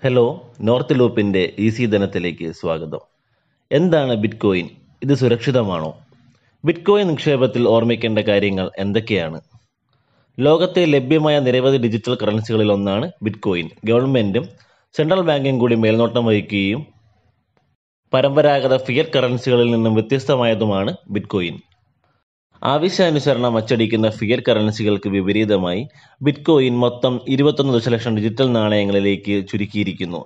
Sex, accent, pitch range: male, native, 105-135 Hz